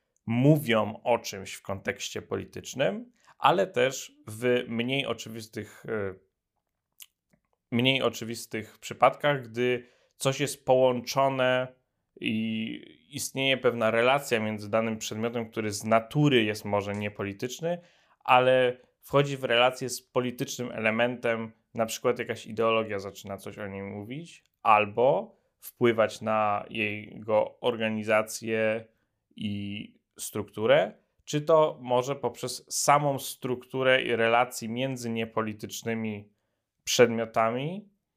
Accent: native